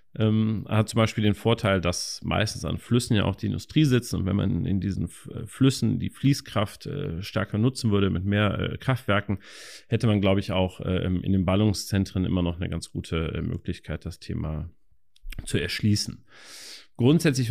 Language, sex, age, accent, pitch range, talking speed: German, male, 40-59, German, 95-115 Hz, 180 wpm